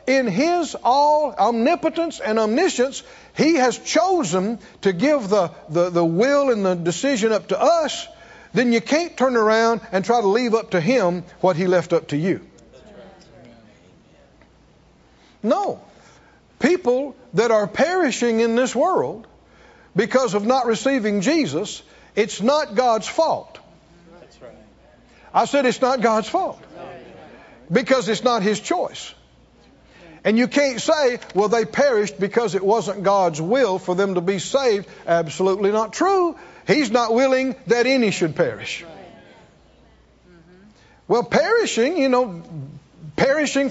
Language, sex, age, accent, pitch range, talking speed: English, male, 60-79, American, 190-280 Hz, 135 wpm